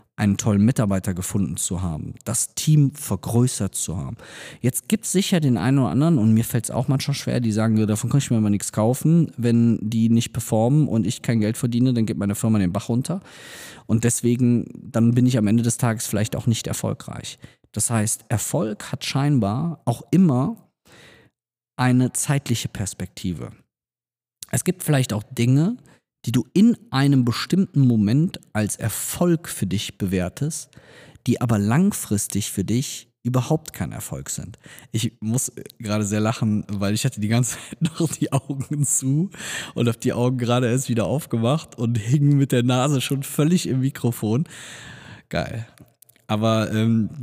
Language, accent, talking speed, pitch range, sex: German, German, 170 wpm, 110-135 Hz, male